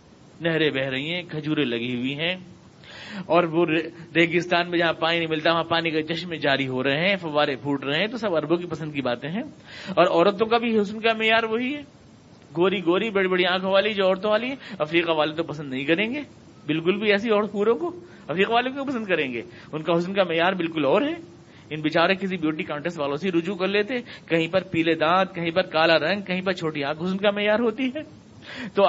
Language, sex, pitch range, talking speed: Urdu, male, 160-230 Hz, 225 wpm